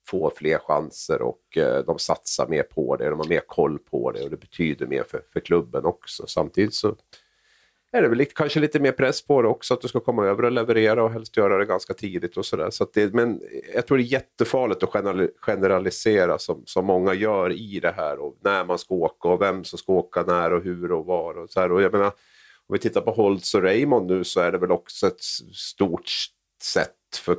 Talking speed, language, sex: 235 wpm, Swedish, male